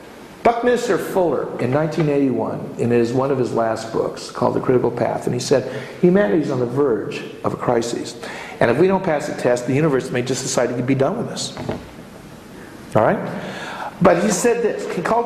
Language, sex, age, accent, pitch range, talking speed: English, male, 50-69, American, 130-190 Hz, 200 wpm